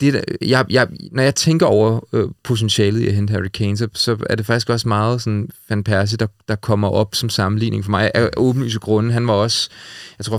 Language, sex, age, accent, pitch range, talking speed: Danish, male, 30-49, native, 105-120 Hz, 230 wpm